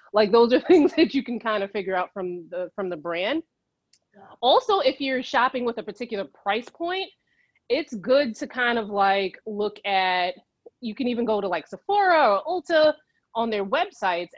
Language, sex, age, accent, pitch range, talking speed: English, female, 30-49, American, 185-235 Hz, 190 wpm